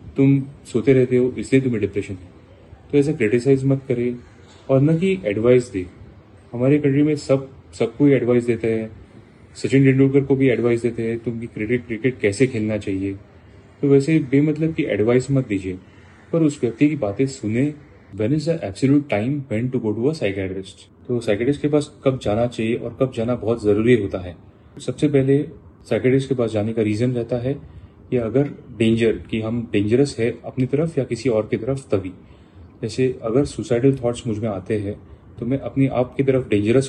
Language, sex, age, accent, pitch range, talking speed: Hindi, male, 10-29, native, 105-135 Hz, 180 wpm